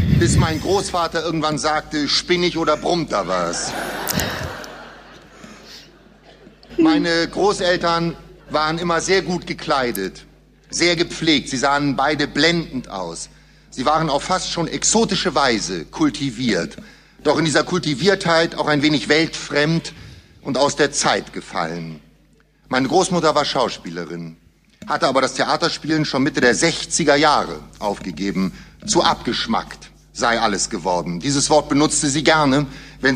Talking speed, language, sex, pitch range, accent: 125 wpm, German, male, 140-175 Hz, German